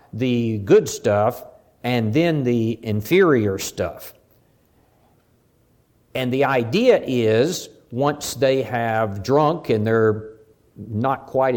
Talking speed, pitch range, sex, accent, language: 105 wpm, 115-155 Hz, male, American, English